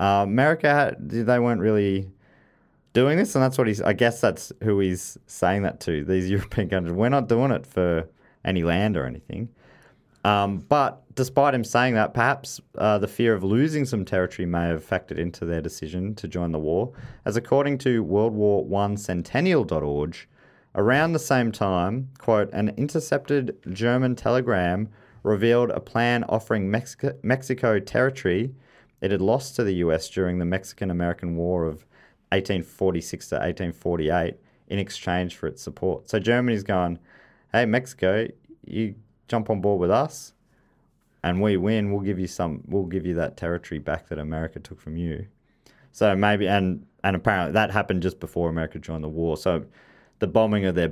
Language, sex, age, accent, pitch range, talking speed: English, male, 30-49, Australian, 90-115 Hz, 170 wpm